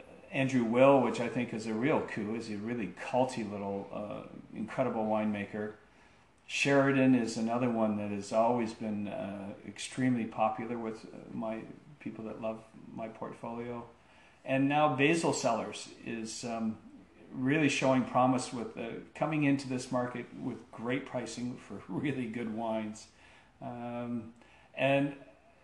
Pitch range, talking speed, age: 110-130 Hz, 140 wpm, 40-59